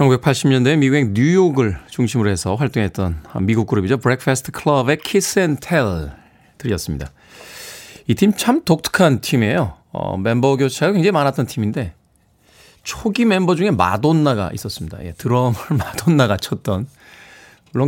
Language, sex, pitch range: Korean, male, 100-150 Hz